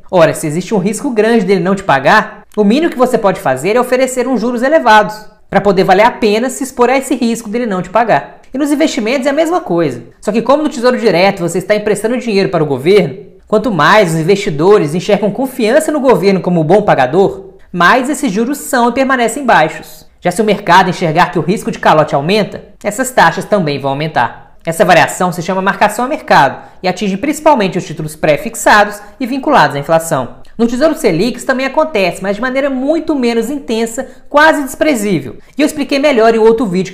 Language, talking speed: Portuguese, 205 wpm